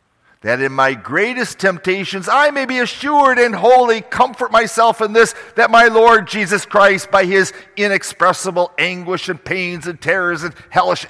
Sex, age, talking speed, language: male, 50-69, 160 wpm, English